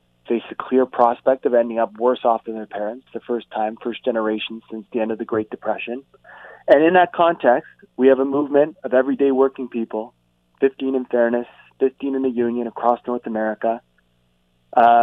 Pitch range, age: 110-130 Hz, 30-49